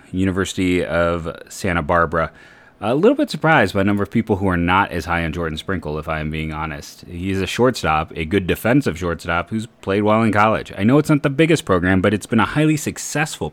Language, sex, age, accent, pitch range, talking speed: English, male, 30-49, American, 80-100 Hz, 220 wpm